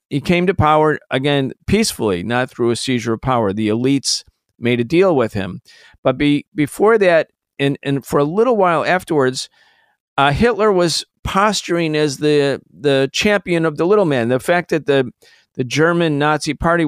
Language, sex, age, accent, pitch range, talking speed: English, male, 50-69, American, 135-165 Hz, 180 wpm